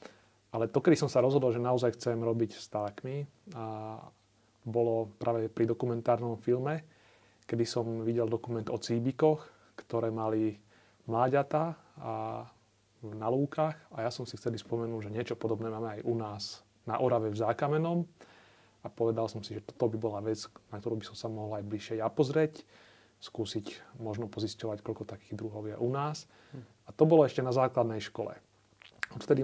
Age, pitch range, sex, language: 30-49, 110-125 Hz, male, Slovak